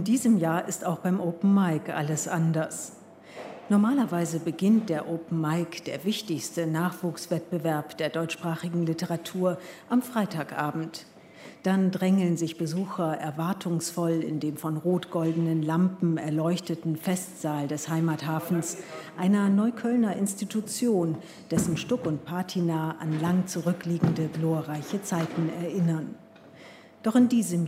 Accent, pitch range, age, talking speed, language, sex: German, 165-195 Hz, 50-69, 115 wpm, German, female